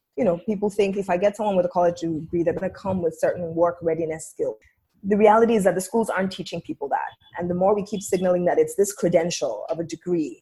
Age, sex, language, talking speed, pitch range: 20-39, female, English, 255 wpm, 175-225 Hz